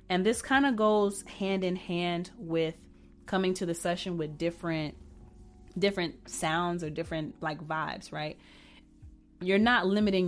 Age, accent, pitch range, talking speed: 30-49, American, 160-195 Hz, 145 wpm